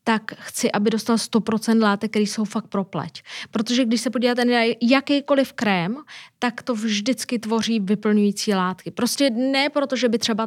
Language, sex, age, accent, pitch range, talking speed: Czech, female, 20-39, native, 200-235 Hz, 170 wpm